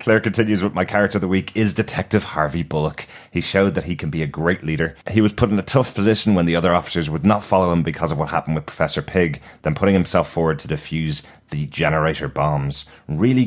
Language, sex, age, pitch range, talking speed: English, male, 30-49, 75-95 Hz, 235 wpm